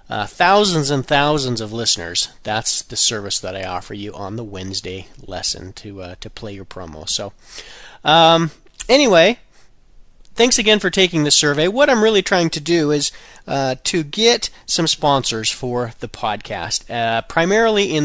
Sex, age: male, 40-59